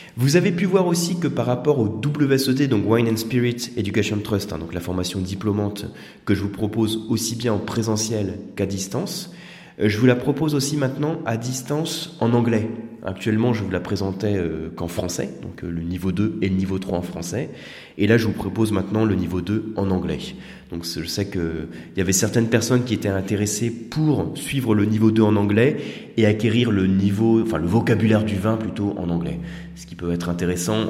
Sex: male